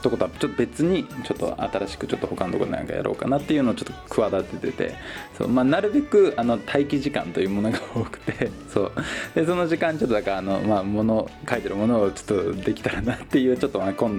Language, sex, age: Japanese, male, 20-39